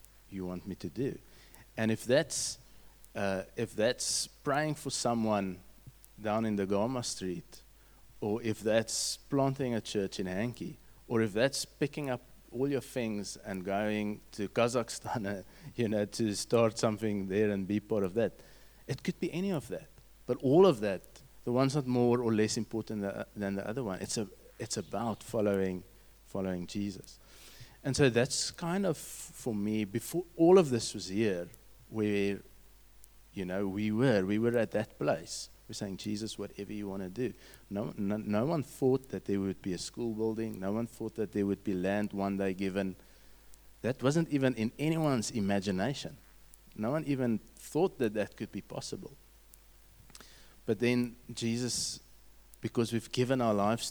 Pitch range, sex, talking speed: 100-125 Hz, male, 175 wpm